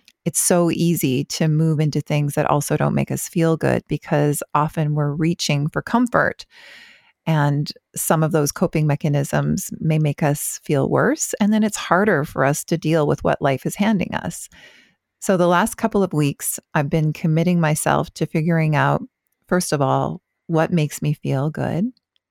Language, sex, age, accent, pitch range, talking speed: English, female, 40-59, American, 150-180 Hz, 180 wpm